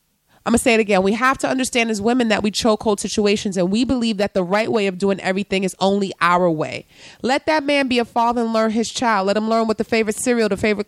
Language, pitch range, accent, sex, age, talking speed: English, 195-245 Hz, American, female, 30-49, 275 wpm